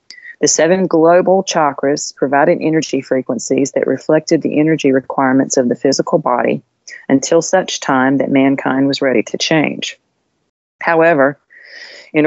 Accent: American